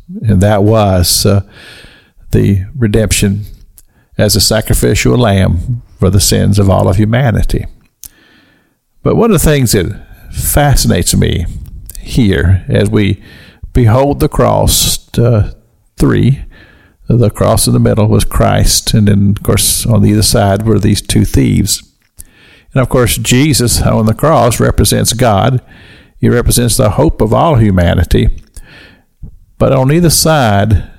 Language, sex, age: English, male, 50-69